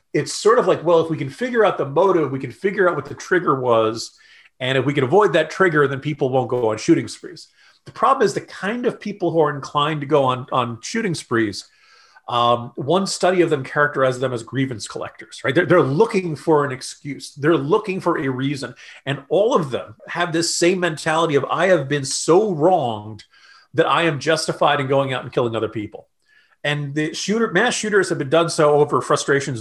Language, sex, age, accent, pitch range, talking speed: English, male, 40-59, American, 135-185 Hz, 220 wpm